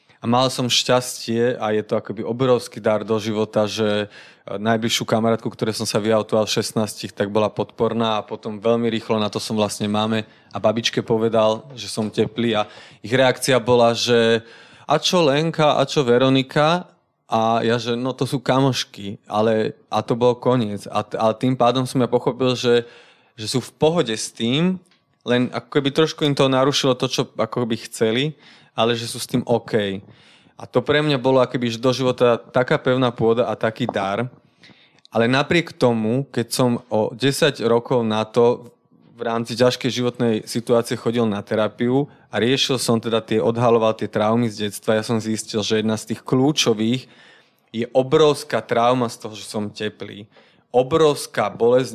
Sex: male